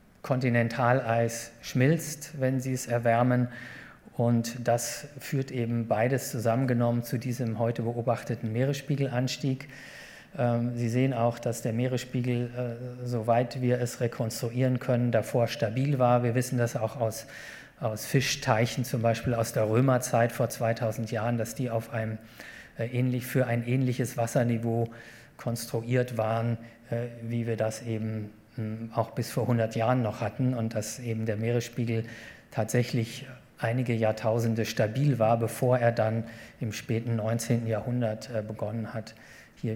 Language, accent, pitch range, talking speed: German, German, 115-130 Hz, 130 wpm